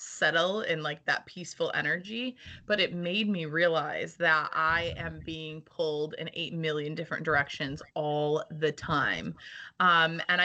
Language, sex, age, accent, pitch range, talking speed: English, female, 20-39, American, 155-190 Hz, 150 wpm